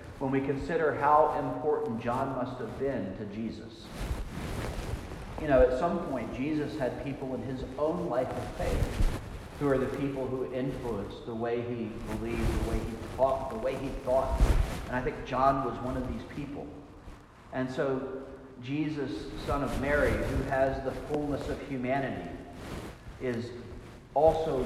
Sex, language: male, English